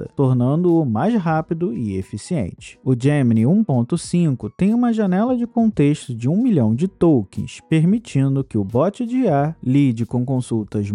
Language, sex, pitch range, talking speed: Portuguese, male, 125-205 Hz, 150 wpm